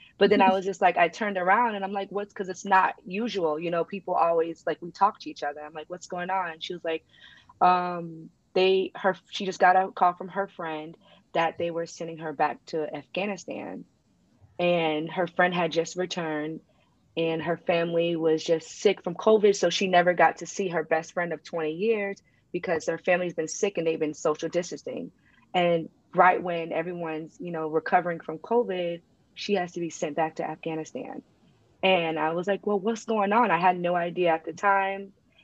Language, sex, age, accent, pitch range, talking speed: English, female, 20-39, American, 160-190 Hz, 210 wpm